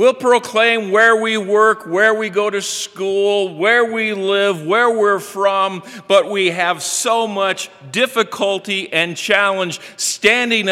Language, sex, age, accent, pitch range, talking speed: English, male, 50-69, American, 160-205 Hz, 140 wpm